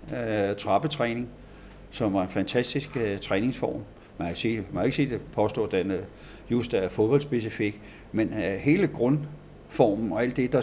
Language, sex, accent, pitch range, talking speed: Danish, male, native, 105-140 Hz, 160 wpm